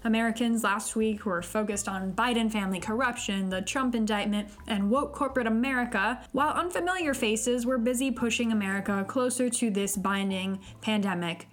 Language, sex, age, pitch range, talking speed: English, female, 10-29, 205-255 Hz, 145 wpm